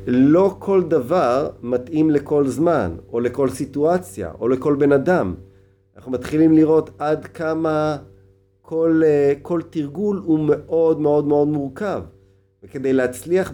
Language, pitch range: Hebrew, 100-145 Hz